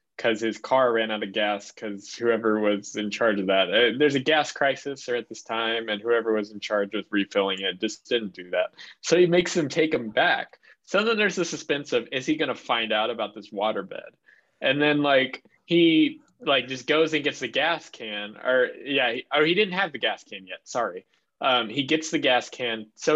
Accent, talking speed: American, 225 wpm